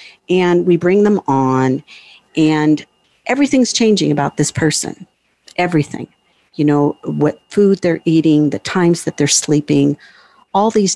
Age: 50-69